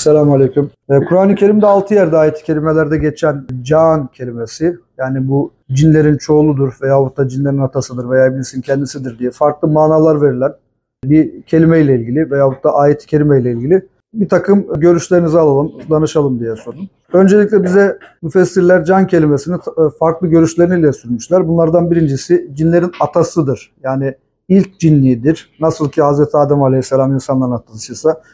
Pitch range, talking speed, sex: 135-175 Hz, 130 wpm, male